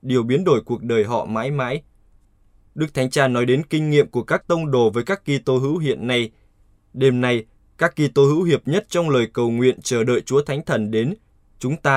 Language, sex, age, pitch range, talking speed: Vietnamese, male, 20-39, 110-140 Hz, 225 wpm